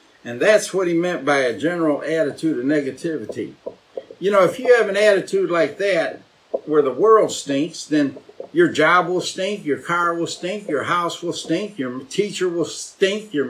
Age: 50-69